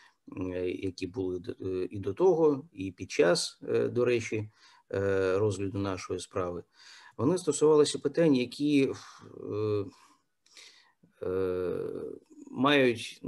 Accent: native